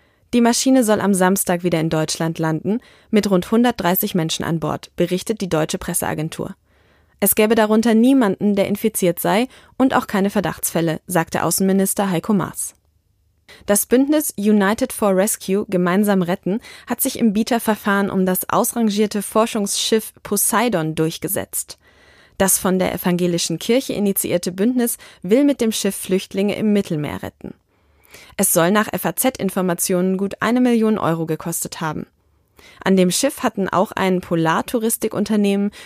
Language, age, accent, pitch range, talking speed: German, 20-39, German, 175-220 Hz, 140 wpm